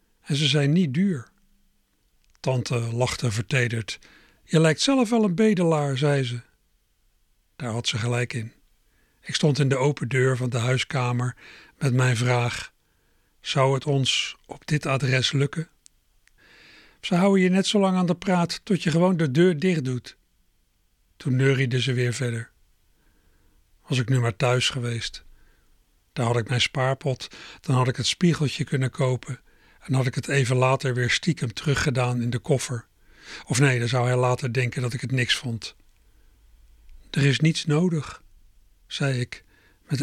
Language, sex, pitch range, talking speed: Dutch, male, 120-150 Hz, 165 wpm